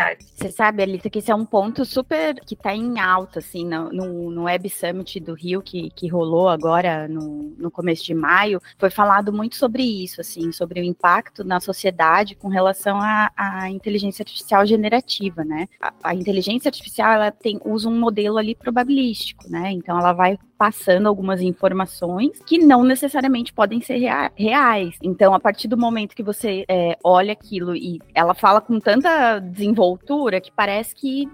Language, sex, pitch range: Portuguese, female, 175-220 Hz